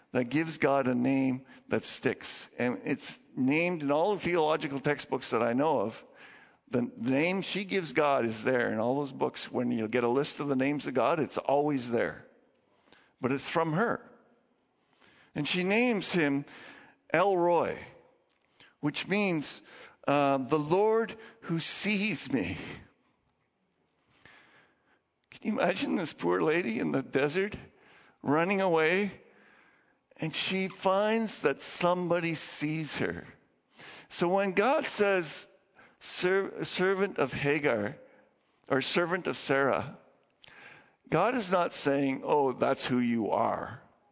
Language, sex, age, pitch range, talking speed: English, male, 50-69, 135-180 Hz, 135 wpm